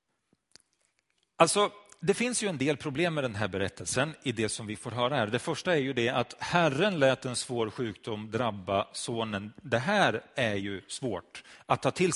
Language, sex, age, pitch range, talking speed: Swedish, male, 40-59, 125-185 Hz, 190 wpm